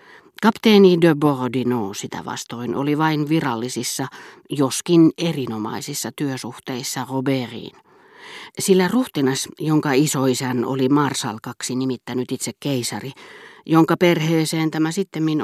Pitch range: 125-160 Hz